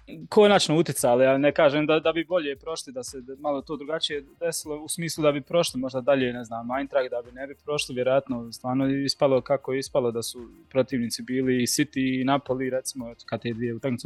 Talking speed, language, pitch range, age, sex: 220 wpm, Croatian, 125-155 Hz, 20-39, male